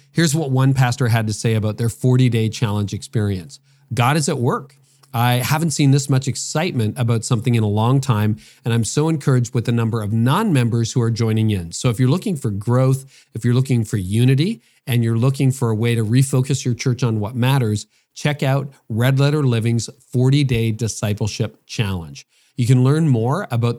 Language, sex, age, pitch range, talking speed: English, male, 40-59, 115-135 Hz, 195 wpm